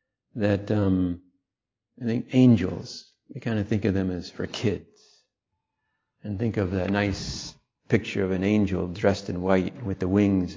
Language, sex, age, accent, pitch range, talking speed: English, male, 50-69, American, 95-115 Hz, 165 wpm